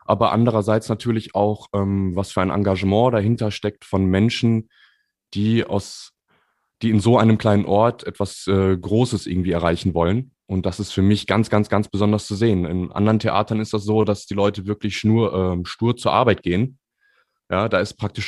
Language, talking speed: German, 190 wpm